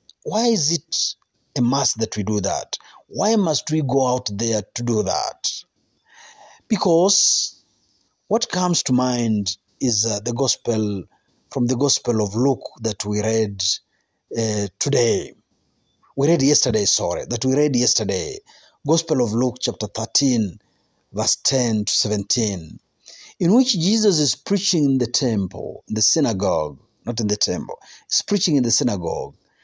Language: Swahili